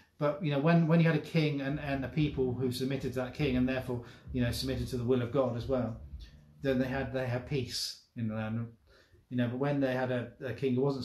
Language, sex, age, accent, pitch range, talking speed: English, male, 30-49, British, 120-140 Hz, 270 wpm